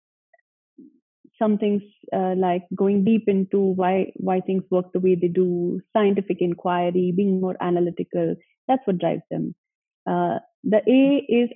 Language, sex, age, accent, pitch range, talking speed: English, female, 30-49, Indian, 185-225 Hz, 140 wpm